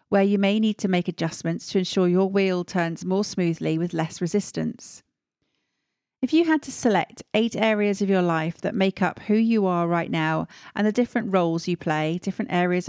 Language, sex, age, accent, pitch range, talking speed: English, female, 40-59, British, 170-215 Hz, 200 wpm